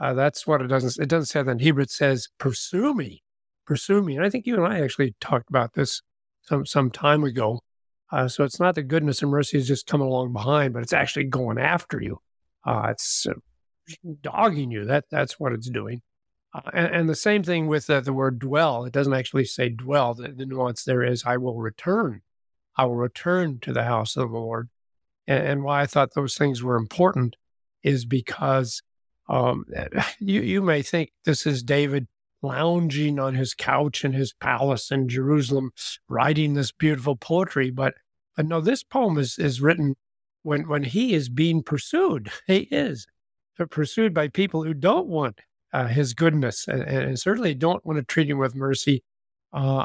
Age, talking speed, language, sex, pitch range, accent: 50-69, 195 wpm, English, male, 130-155 Hz, American